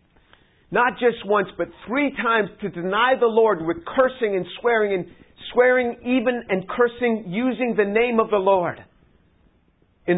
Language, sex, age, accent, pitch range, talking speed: English, male, 50-69, American, 160-210 Hz, 155 wpm